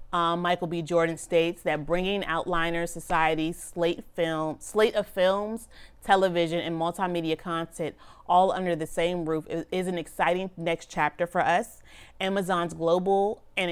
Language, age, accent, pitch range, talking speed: English, 30-49, American, 160-185 Hz, 145 wpm